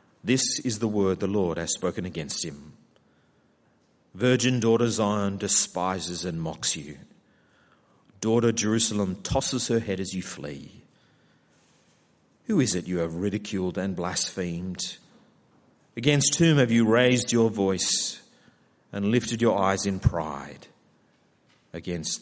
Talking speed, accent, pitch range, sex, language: 125 wpm, Australian, 100-130 Hz, male, English